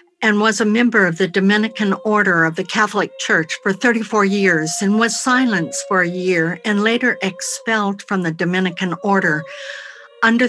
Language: English